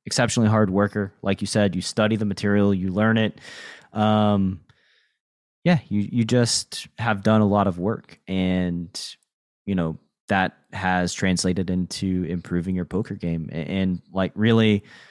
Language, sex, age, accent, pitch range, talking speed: English, male, 20-39, American, 95-115 Hz, 150 wpm